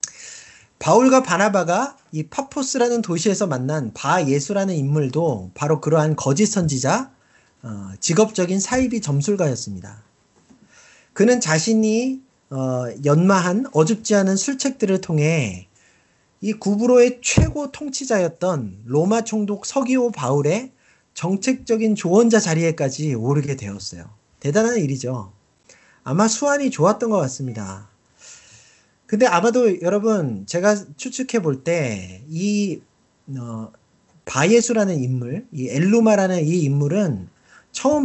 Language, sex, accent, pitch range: Korean, male, native, 140-220 Hz